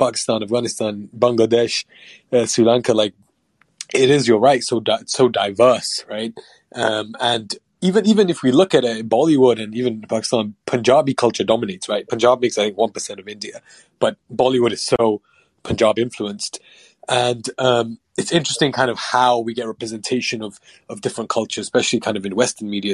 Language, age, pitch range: English, 20-39, 105-130 Hz